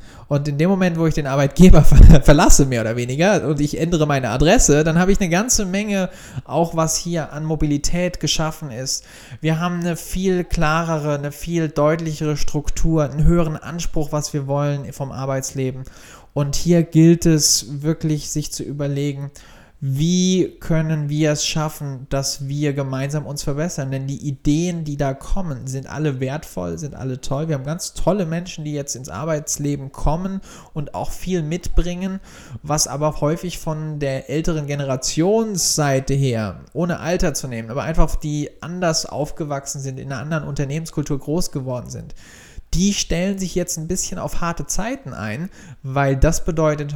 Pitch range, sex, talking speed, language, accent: 140-165 Hz, male, 165 wpm, German, German